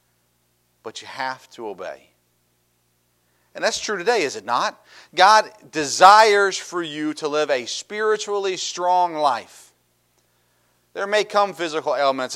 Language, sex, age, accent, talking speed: English, male, 40-59, American, 130 wpm